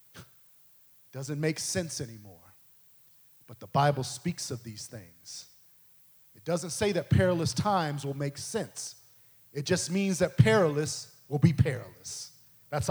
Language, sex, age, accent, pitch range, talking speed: English, male, 40-59, American, 130-170 Hz, 135 wpm